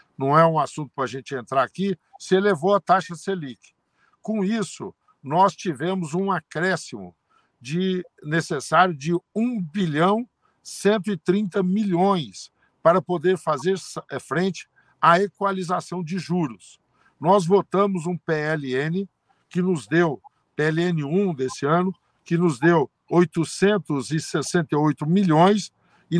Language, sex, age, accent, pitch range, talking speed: Portuguese, male, 60-79, Brazilian, 160-190 Hz, 115 wpm